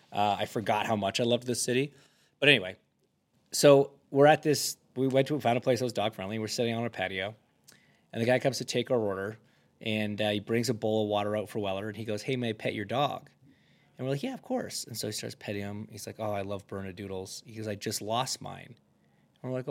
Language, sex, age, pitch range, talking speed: English, male, 30-49, 110-145 Hz, 260 wpm